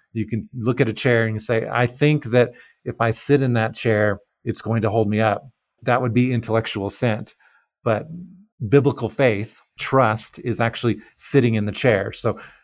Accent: American